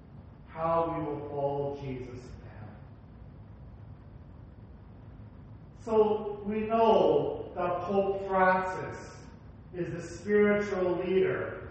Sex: male